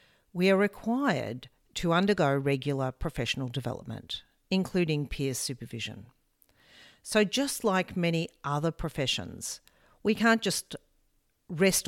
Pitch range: 140-210 Hz